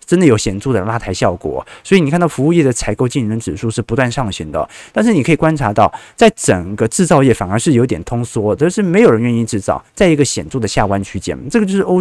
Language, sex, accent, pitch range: Chinese, male, native, 110-150 Hz